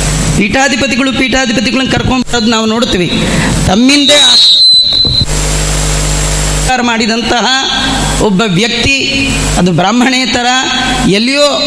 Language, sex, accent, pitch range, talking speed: Kannada, female, native, 210-260 Hz, 55 wpm